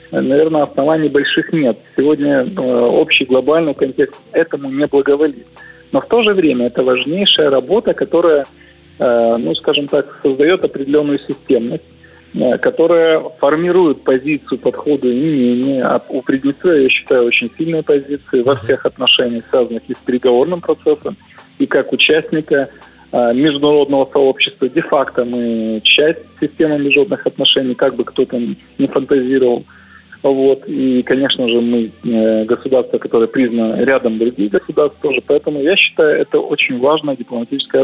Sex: male